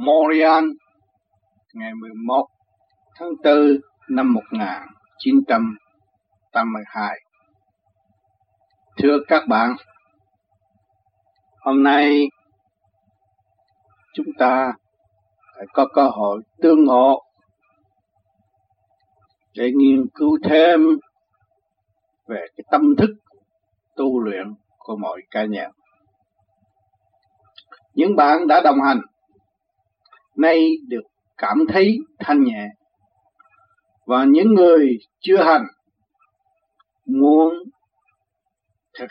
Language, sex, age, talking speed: Vietnamese, male, 60-79, 80 wpm